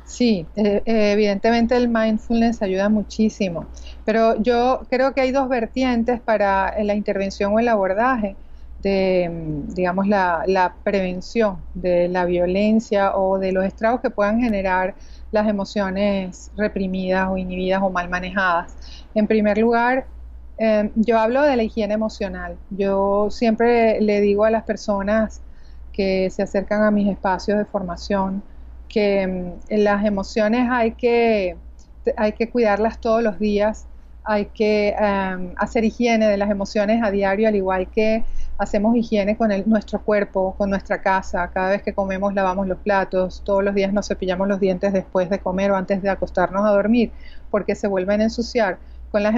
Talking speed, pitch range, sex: 155 wpm, 190-220 Hz, female